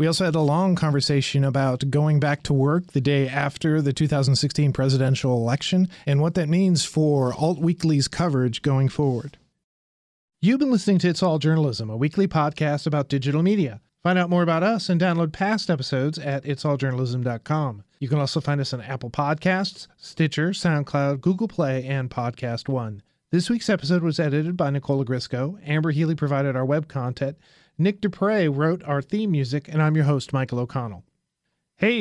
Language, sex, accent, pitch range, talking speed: English, male, American, 140-175 Hz, 175 wpm